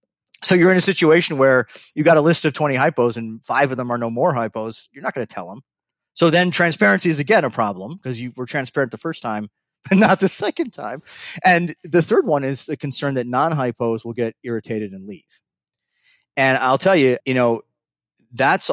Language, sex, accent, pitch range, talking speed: English, male, American, 115-145 Hz, 215 wpm